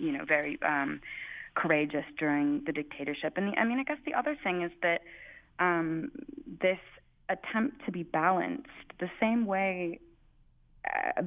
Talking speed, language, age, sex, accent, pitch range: 150 wpm, English, 20-39, female, American, 150-230 Hz